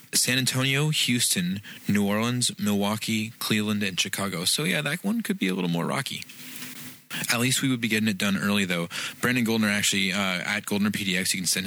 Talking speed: 200 wpm